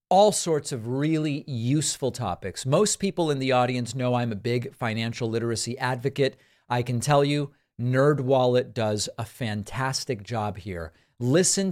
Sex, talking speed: male, 150 wpm